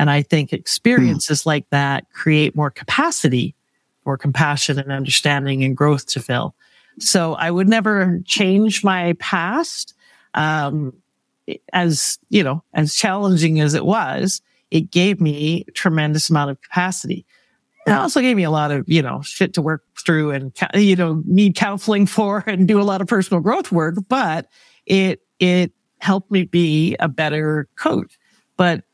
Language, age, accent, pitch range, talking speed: English, 50-69, American, 150-190 Hz, 160 wpm